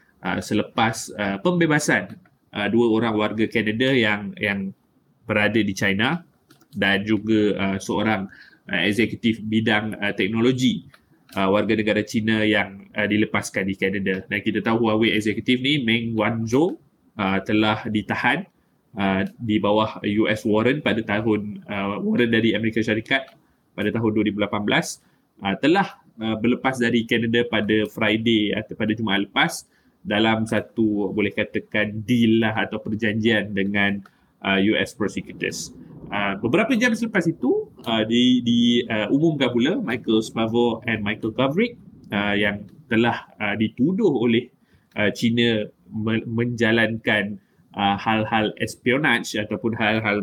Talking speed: 135 wpm